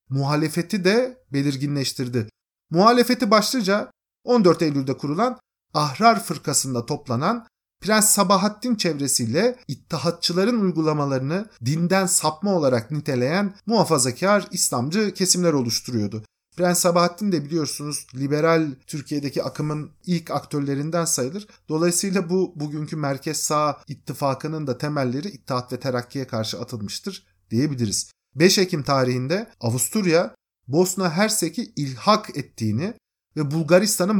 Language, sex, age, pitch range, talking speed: Turkish, male, 50-69, 140-200 Hz, 100 wpm